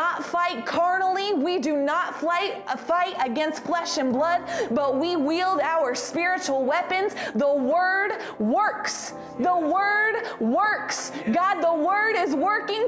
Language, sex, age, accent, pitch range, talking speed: English, female, 20-39, American, 310-390 Hz, 125 wpm